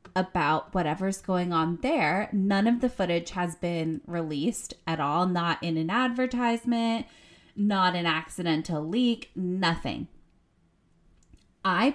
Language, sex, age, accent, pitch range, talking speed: English, female, 20-39, American, 175-230 Hz, 120 wpm